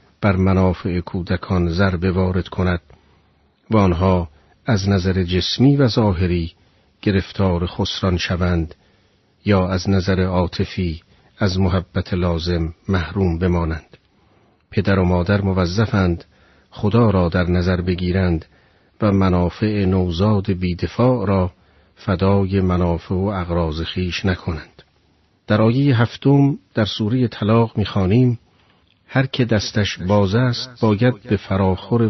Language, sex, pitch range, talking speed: Persian, male, 90-105 Hz, 110 wpm